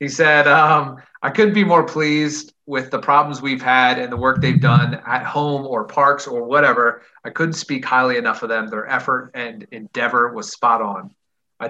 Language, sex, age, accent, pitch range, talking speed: English, male, 30-49, American, 115-145 Hz, 200 wpm